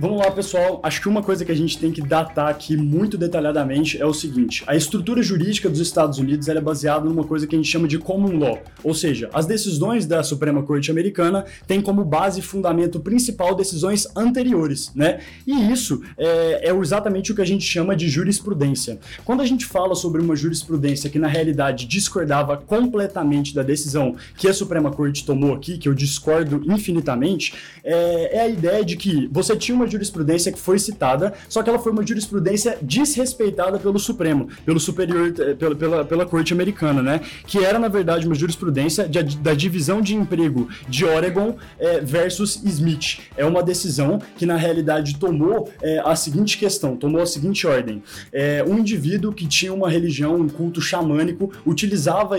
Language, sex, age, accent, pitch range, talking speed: Portuguese, male, 20-39, Brazilian, 150-195 Hz, 185 wpm